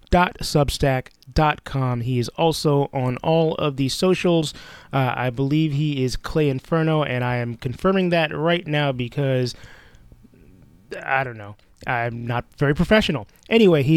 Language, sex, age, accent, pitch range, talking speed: English, male, 20-39, American, 125-155 Hz, 145 wpm